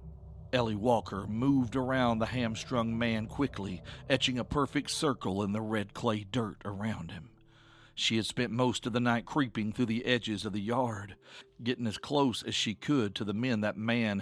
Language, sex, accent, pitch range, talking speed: English, male, American, 100-125 Hz, 185 wpm